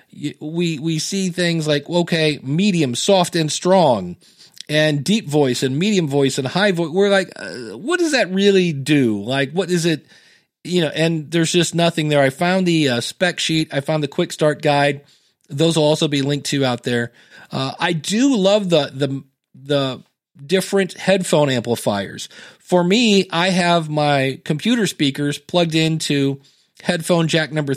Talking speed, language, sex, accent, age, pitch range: 175 wpm, English, male, American, 40-59, 145-180 Hz